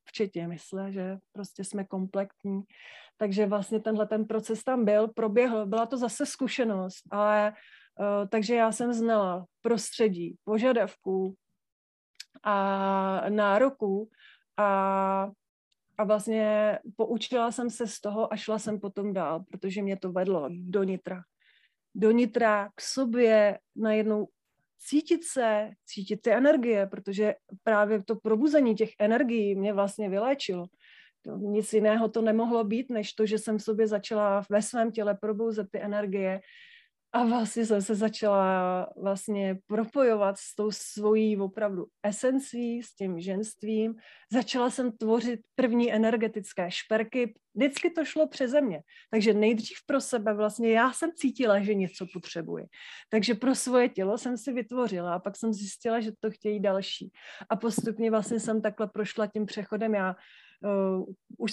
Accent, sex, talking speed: native, female, 145 wpm